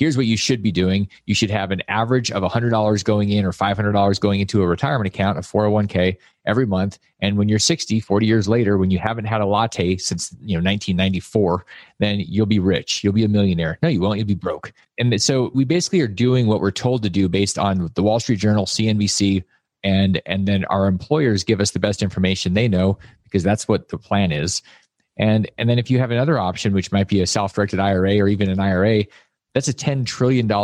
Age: 30-49